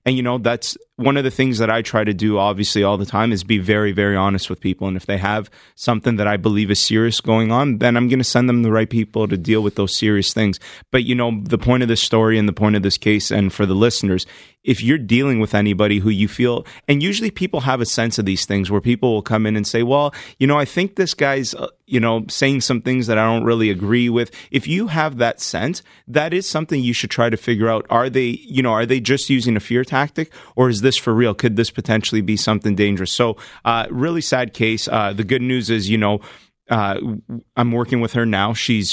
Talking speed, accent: 255 wpm, American